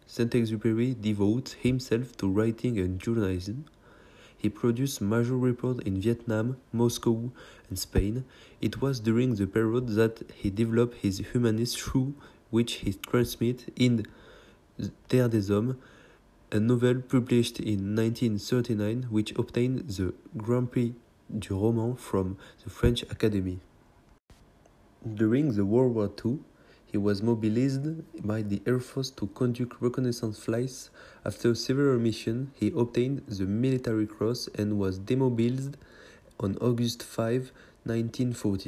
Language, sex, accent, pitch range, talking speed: English, male, French, 105-125 Hz, 125 wpm